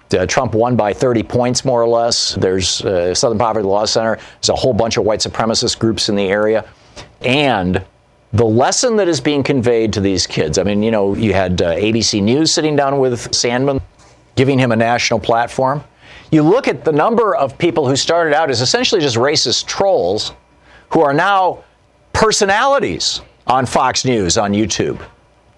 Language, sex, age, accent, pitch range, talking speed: English, male, 50-69, American, 115-155 Hz, 185 wpm